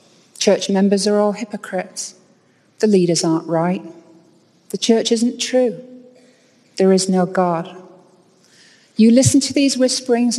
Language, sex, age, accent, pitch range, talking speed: English, female, 40-59, British, 180-230 Hz, 125 wpm